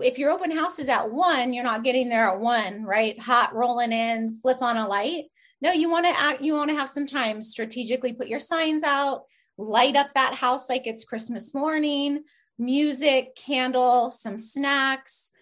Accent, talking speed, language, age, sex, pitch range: American, 190 wpm, English, 20-39, female, 225-275 Hz